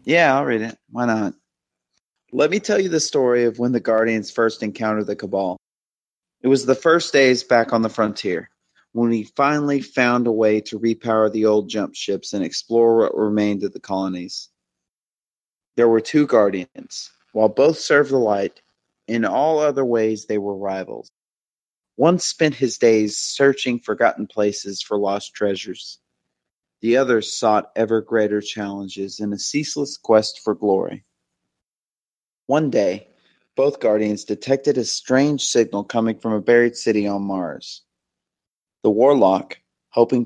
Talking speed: 155 wpm